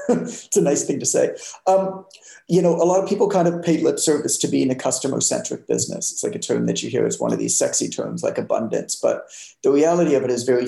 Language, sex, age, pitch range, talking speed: English, male, 40-59, 145-230 Hz, 260 wpm